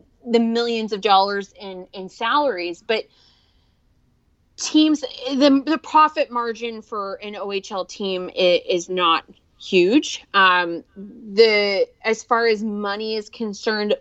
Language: English